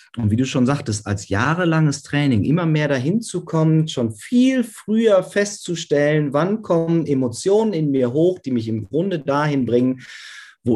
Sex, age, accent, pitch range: male, 30-49, German, 115-165 Hz